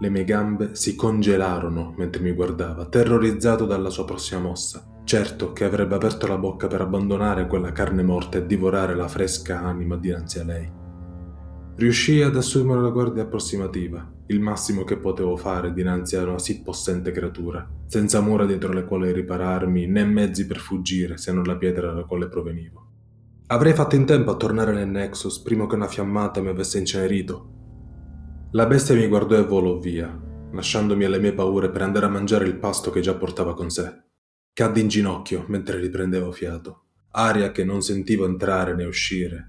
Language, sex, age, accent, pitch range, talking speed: Italian, male, 20-39, native, 90-105 Hz, 175 wpm